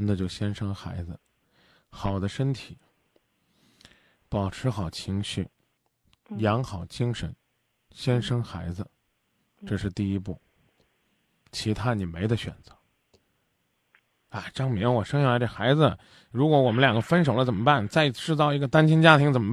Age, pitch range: 20-39, 100-140 Hz